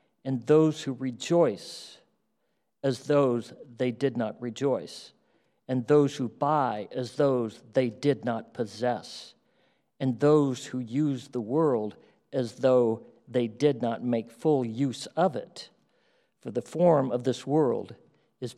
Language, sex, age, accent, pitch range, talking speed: English, male, 50-69, American, 125-175 Hz, 140 wpm